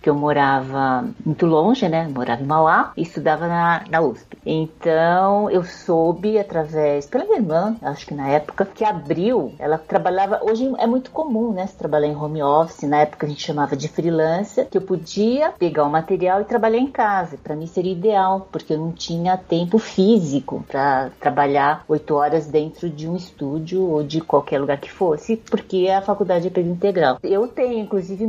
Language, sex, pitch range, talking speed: Portuguese, female, 155-215 Hz, 190 wpm